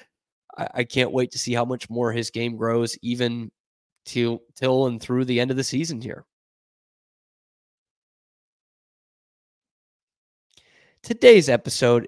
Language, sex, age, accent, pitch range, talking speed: English, male, 20-39, American, 120-165 Hz, 120 wpm